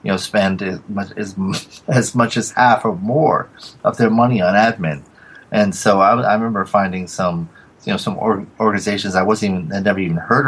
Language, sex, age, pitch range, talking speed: English, male, 30-49, 90-115 Hz, 205 wpm